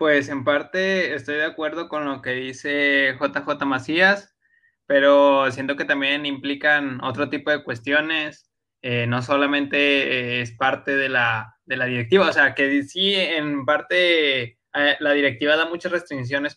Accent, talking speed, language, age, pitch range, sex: Mexican, 155 wpm, Spanish, 20-39, 130-155 Hz, male